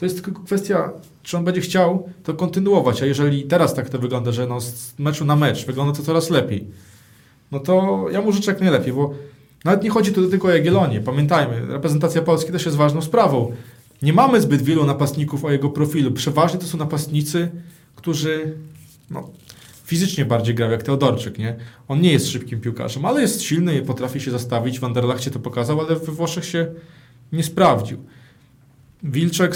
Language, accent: Polish, native